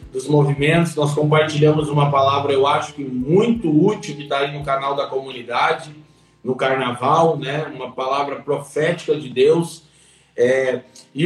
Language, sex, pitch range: Portuguese, male, 150-210 Hz